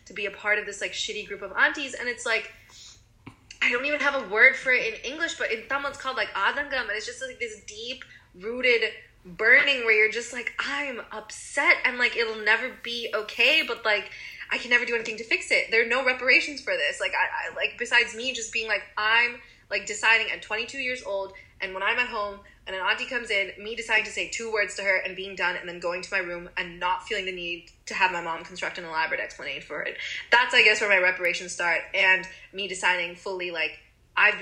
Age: 20-39